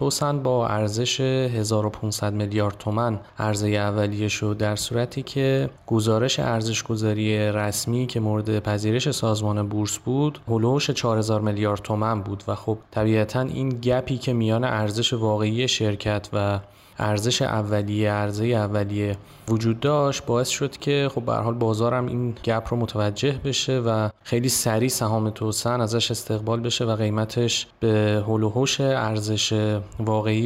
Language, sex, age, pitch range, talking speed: Persian, male, 20-39, 110-125 Hz, 140 wpm